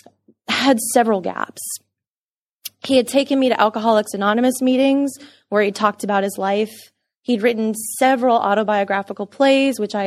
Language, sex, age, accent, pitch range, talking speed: English, female, 20-39, American, 210-260 Hz, 145 wpm